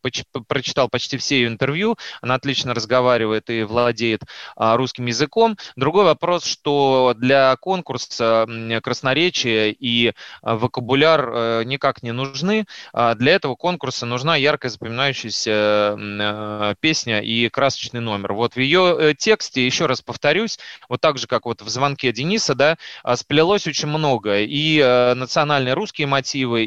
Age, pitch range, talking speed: 20-39, 120-150 Hz, 125 wpm